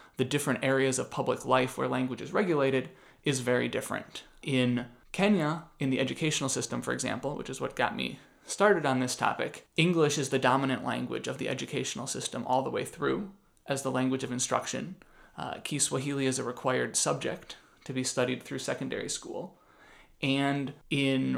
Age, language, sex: 30-49, English, male